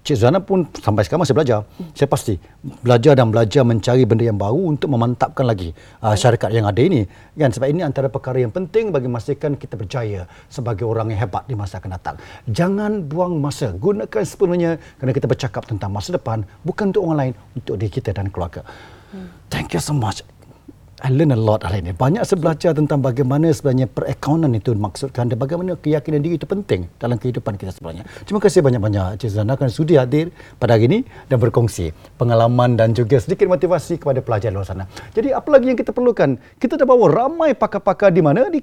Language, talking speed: Malay, 195 wpm